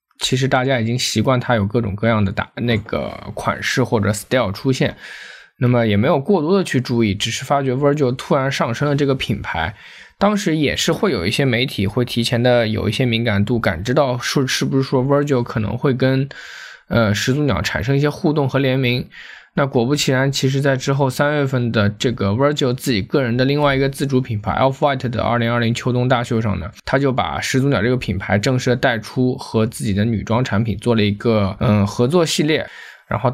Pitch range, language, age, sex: 115-140 Hz, Chinese, 20-39, male